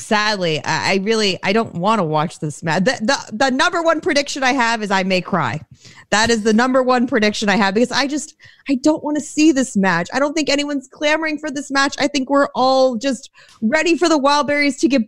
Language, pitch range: English, 190-275 Hz